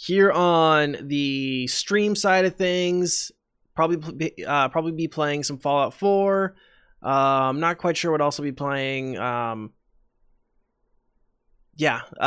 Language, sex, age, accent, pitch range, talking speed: English, male, 20-39, American, 130-165 Hz, 125 wpm